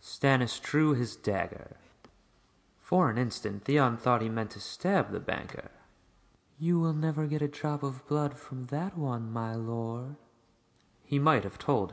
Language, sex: English, male